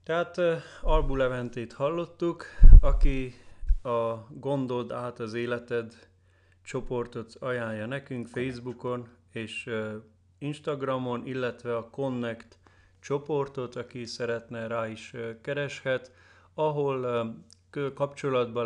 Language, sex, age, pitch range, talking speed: Hungarian, male, 30-49, 110-125 Hz, 85 wpm